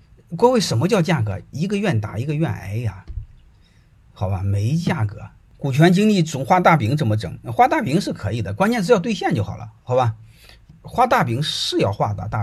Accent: native